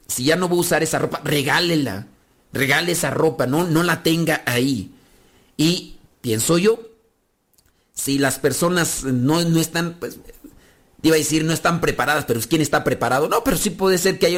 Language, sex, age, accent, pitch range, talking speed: Spanish, male, 50-69, Mexican, 135-170 Hz, 185 wpm